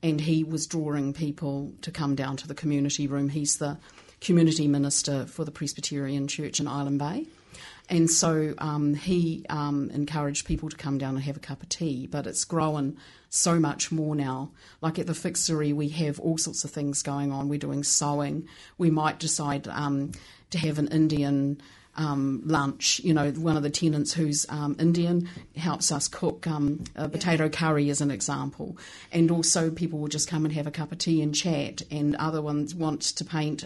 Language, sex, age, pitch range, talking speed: English, female, 40-59, 145-160 Hz, 195 wpm